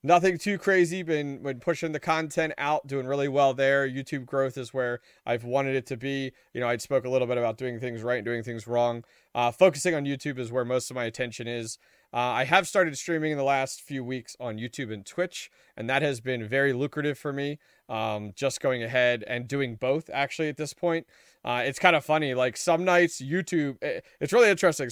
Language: English